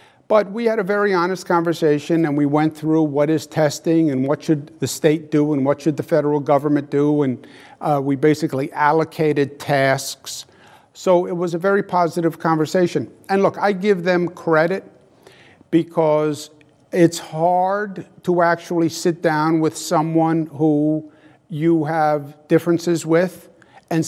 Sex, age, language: male, 50-69, English